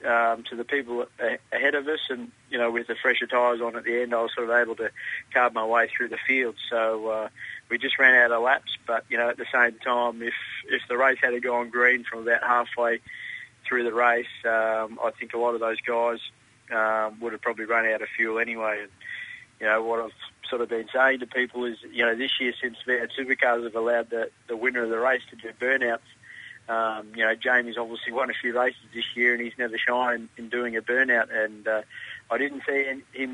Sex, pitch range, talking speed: male, 115-125 Hz, 230 wpm